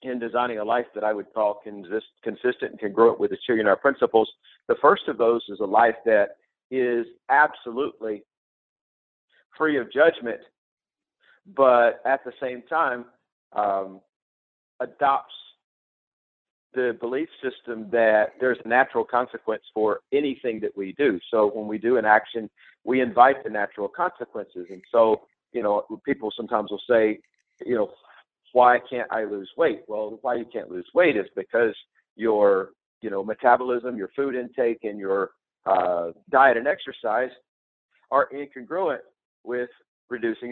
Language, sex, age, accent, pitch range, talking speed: English, male, 50-69, American, 105-140 Hz, 150 wpm